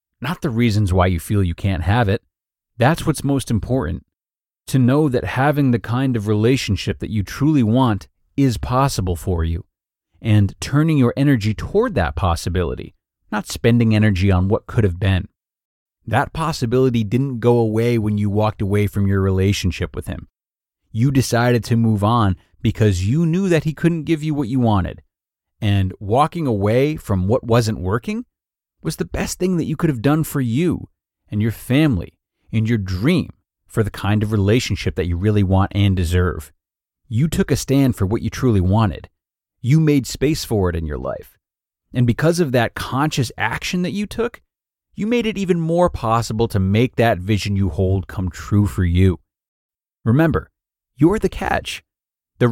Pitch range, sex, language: 95-145 Hz, male, English